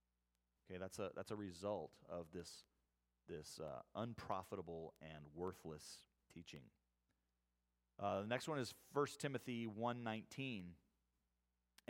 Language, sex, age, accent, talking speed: English, male, 40-59, American, 110 wpm